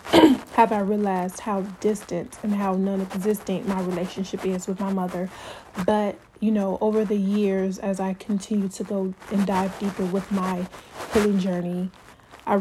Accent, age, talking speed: American, 20-39, 155 wpm